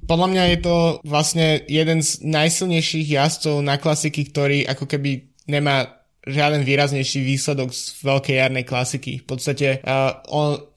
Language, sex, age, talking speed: Slovak, male, 20-39, 145 wpm